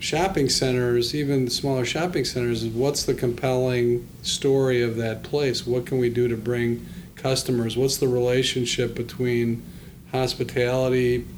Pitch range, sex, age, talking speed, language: 115-130 Hz, male, 40-59, 135 wpm, English